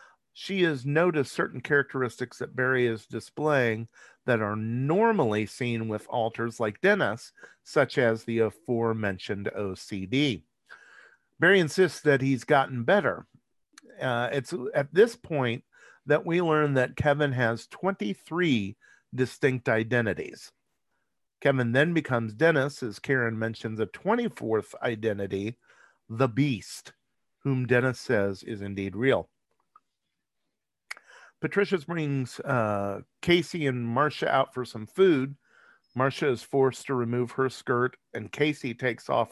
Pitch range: 115-145 Hz